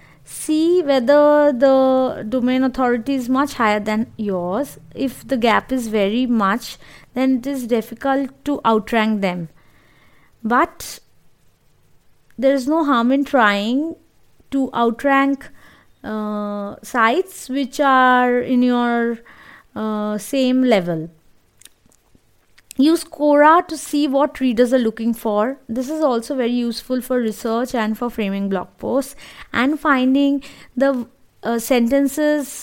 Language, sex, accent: English, female, Indian